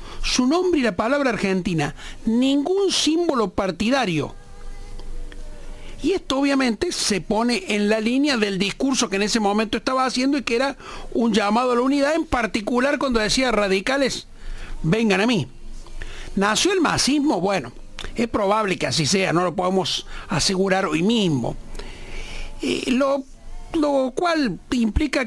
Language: Spanish